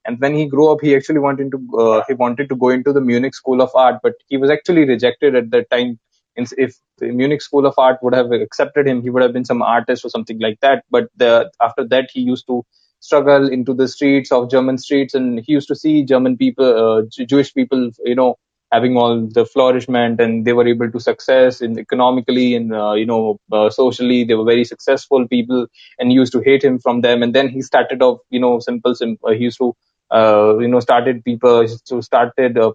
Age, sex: 20-39, male